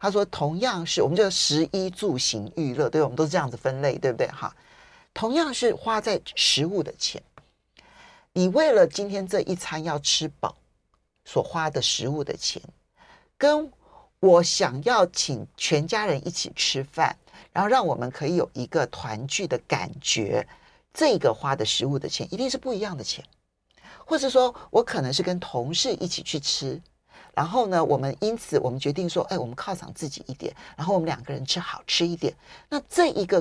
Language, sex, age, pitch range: Chinese, male, 50-69, 150-245 Hz